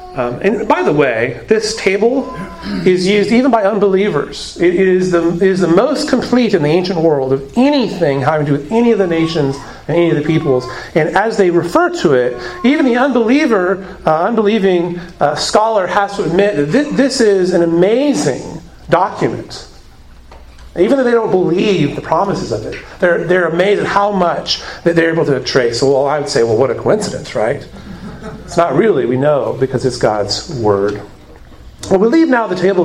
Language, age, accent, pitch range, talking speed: English, 40-59, American, 155-205 Hz, 190 wpm